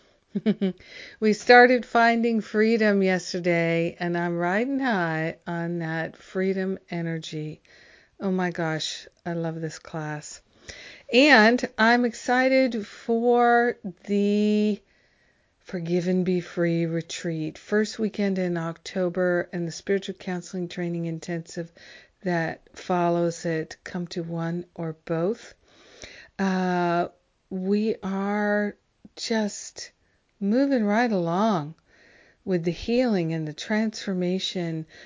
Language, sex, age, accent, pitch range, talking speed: English, female, 50-69, American, 170-205 Hz, 105 wpm